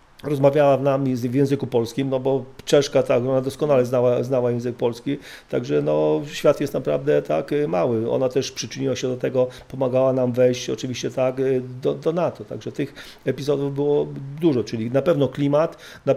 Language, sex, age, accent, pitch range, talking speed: Polish, male, 40-59, native, 125-135 Hz, 175 wpm